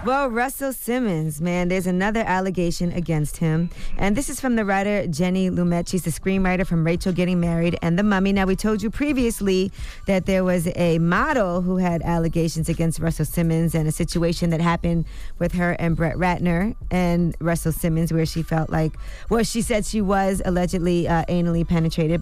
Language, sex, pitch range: English, female, 165-195 Hz